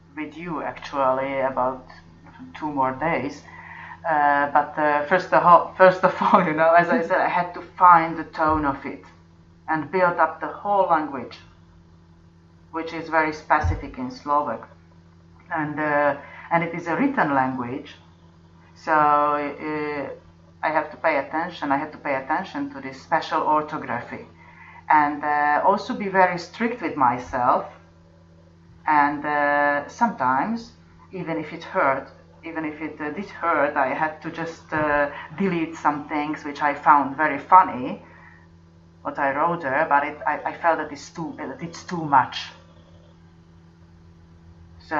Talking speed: 155 wpm